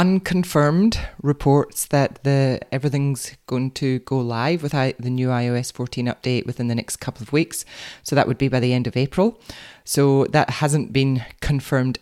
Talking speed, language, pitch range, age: 175 wpm, English, 120-135 Hz, 20-39